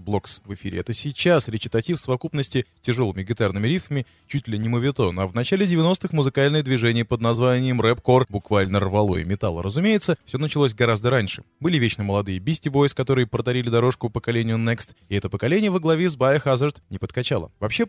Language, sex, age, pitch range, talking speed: Russian, male, 20-39, 115-155 Hz, 185 wpm